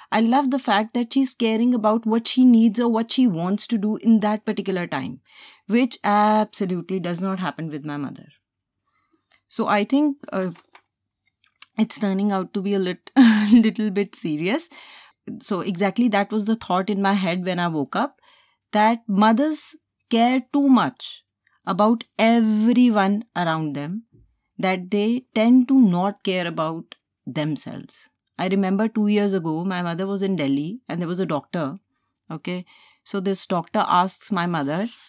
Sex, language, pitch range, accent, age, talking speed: female, Hindi, 185-235 Hz, native, 30-49, 160 wpm